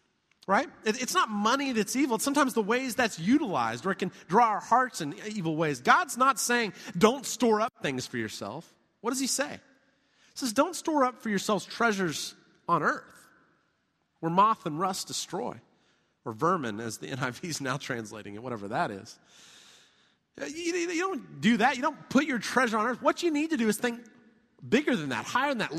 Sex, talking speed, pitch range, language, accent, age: male, 200 wpm, 190-275 Hz, English, American, 30-49